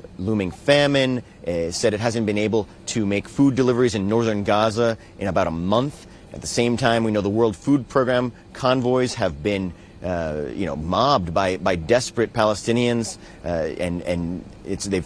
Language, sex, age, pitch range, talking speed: English, male, 30-49, 100-125 Hz, 175 wpm